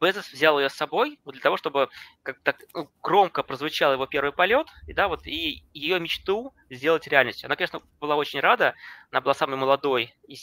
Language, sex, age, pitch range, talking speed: Russian, male, 20-39, 135-175 Hz, 200 wpm